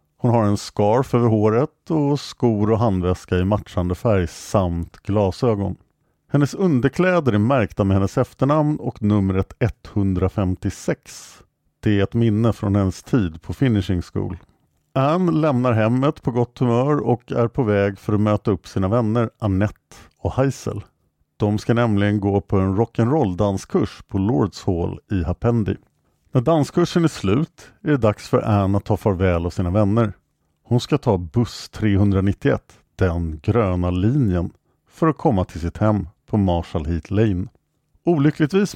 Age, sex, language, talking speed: 50-69, male, English, 155 wpm